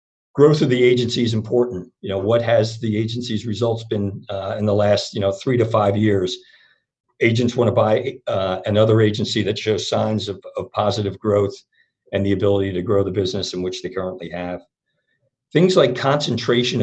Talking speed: 190 wpm